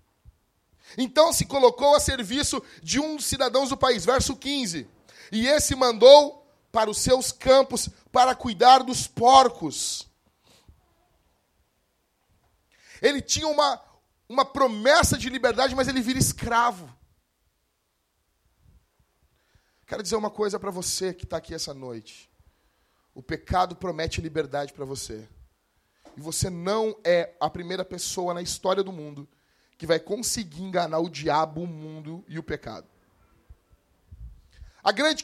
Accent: Brazilian